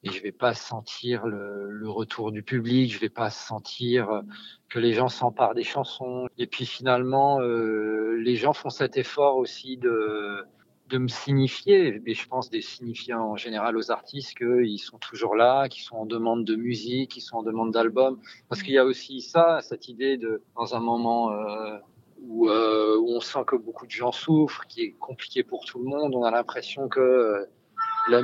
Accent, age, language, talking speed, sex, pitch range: French, 40-59, French, 200 wpm, male, 110-135 Hz